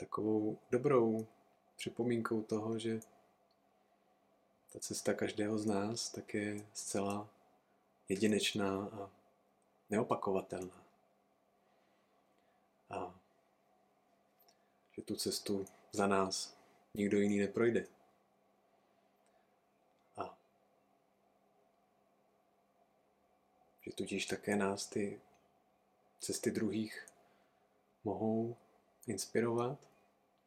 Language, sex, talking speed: Czech, male, 70 wpm